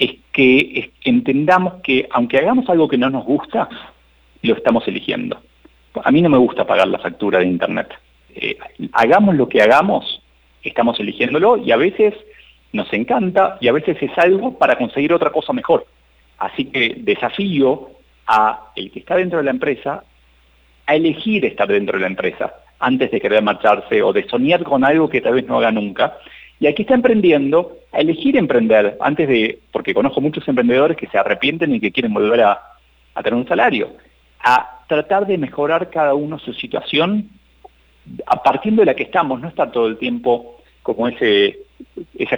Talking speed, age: 180 wpm, 40-59